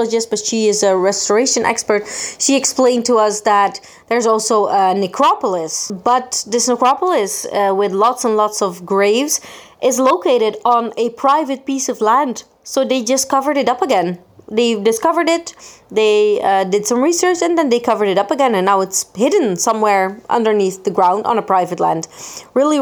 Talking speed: 180 wpm